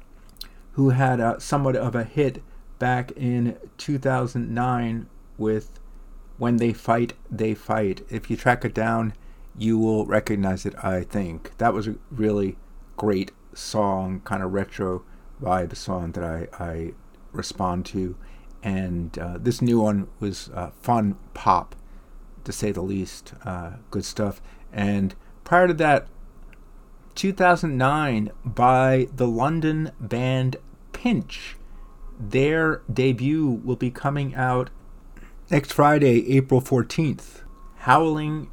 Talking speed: 125 wpm